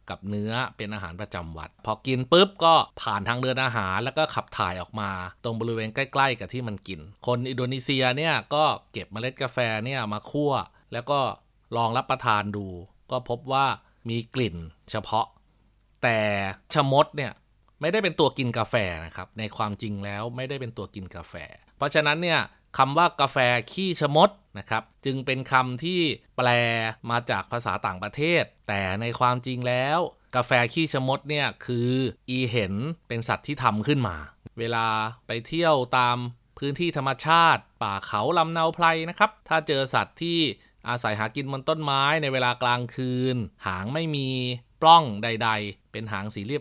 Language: Thai